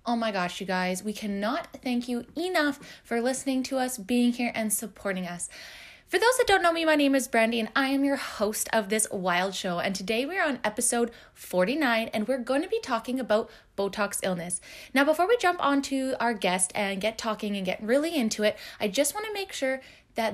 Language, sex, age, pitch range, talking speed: English, female, 20-39, 200-265 Hz, 220 wpm